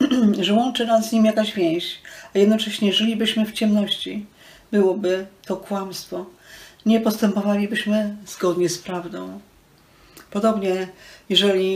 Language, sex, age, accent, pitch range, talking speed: Polish, female, 40-59, native, 170-210 Hz, 110 wpm